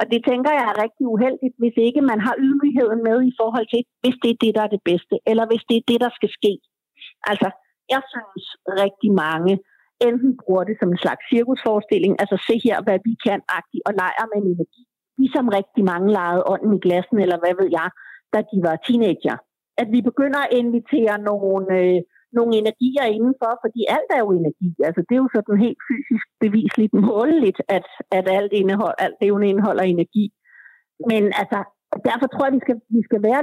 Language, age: Danish, 50-69